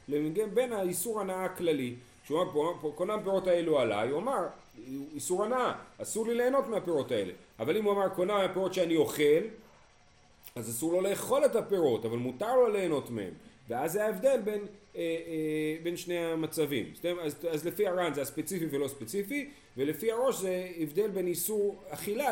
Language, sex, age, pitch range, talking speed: Hebrew, male, 40-59, 135-200 Hz, 165 wpm